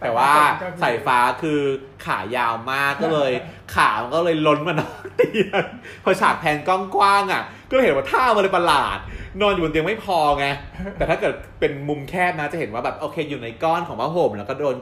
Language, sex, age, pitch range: Thai, male, 20-39, 100-145 Hz